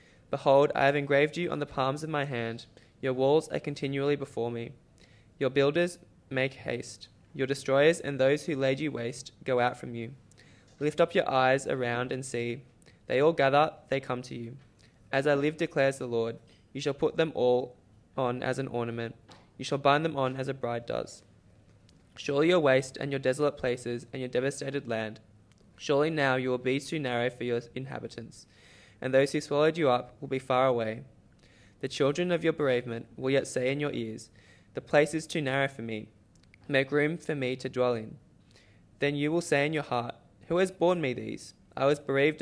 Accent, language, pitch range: Australian, English, 115-145 Hz